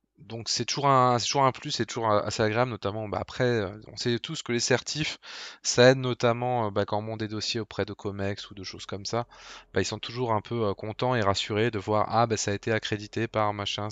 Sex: male